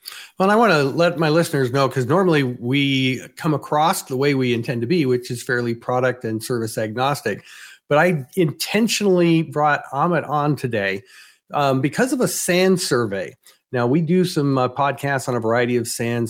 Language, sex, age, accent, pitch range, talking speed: English, male, 40-59, American, 125-165 Hz, 190 wpm